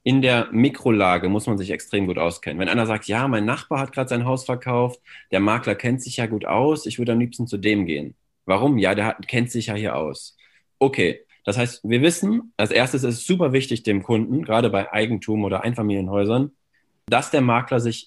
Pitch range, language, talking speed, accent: 110-140 Hz, German, 215 wpm, German